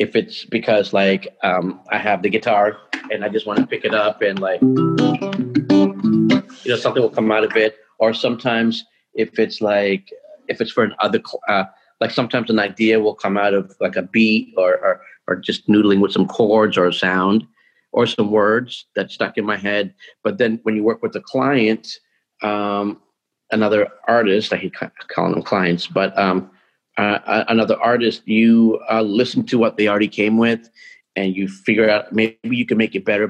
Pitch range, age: 105-115 Hz, 40-59